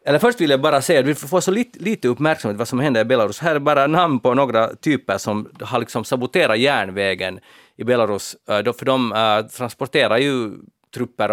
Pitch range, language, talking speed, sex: 105-140 Hz, Swedish, 195 wpm, male